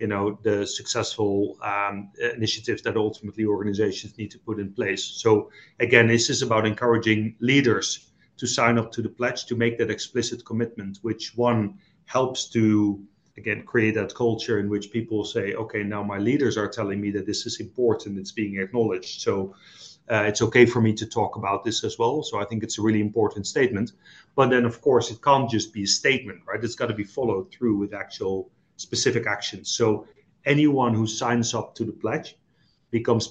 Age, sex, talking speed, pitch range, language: 30-49, male, 195 wpm, 105-120 Hz, English